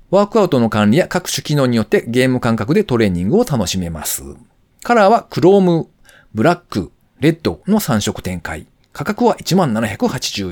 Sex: male